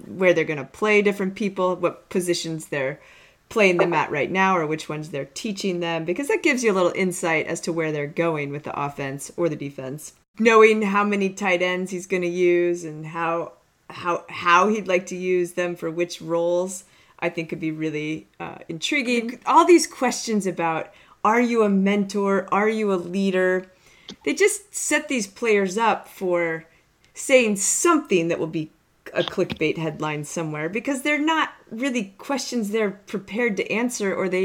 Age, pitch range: 30-49, 165-210 Hz